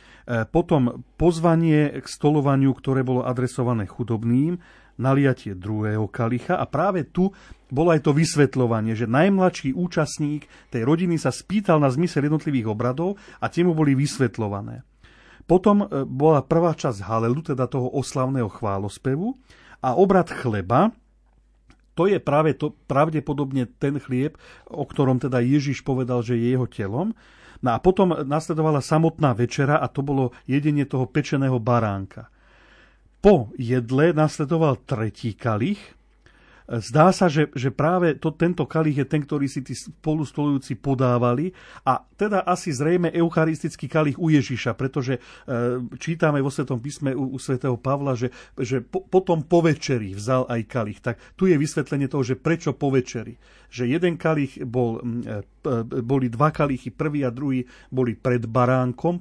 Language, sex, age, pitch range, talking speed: Slovak, male, 40-59, 125-160 Hz, 140 wpm